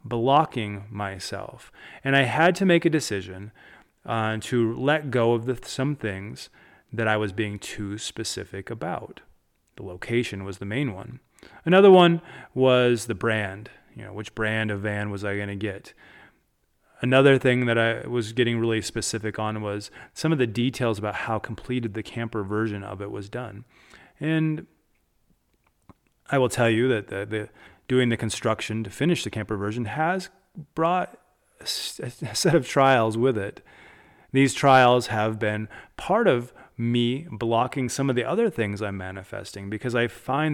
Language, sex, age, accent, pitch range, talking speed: English, male, 30-49, American, 110-130 Hz, 165 wpm